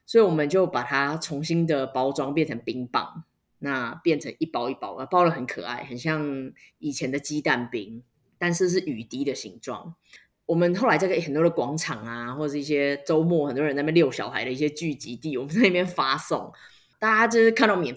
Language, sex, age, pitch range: Chinese, female, 20-39, 150-220 Hz